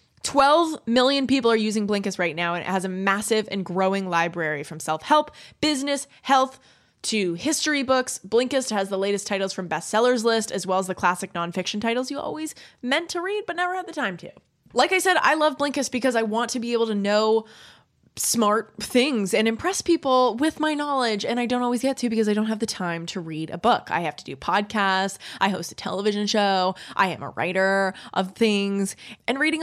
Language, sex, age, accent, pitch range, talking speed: English, female, 20-39, American, 190-255 Hz, 215 wpm